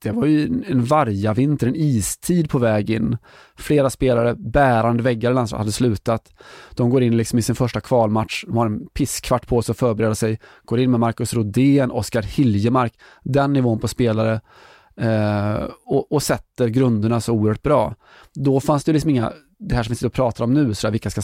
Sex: male